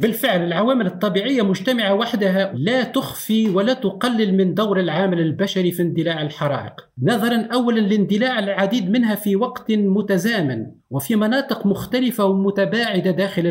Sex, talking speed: male, 130 wpm